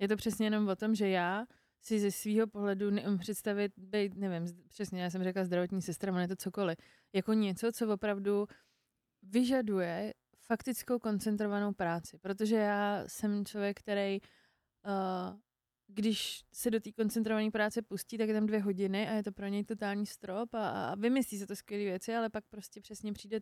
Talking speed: 175 wpm